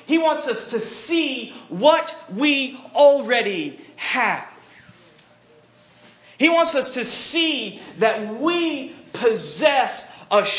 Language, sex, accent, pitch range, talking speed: English, male, American, 185-265 Hz, 100 wpm